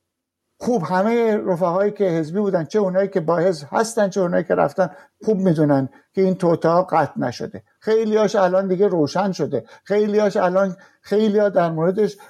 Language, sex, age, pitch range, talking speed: English, male, 60-79, 180-230 Hz, 170 wpm